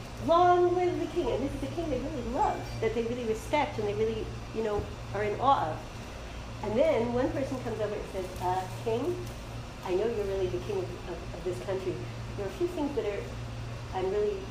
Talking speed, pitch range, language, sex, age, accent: 225 wpm, 175-280 Hz, English, female, 40-59, American